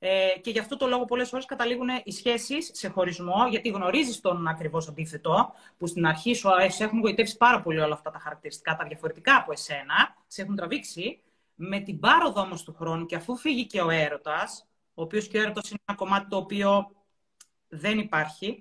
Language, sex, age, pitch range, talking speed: Greek, female, 30-49, 165-245 Hz, 195 wpm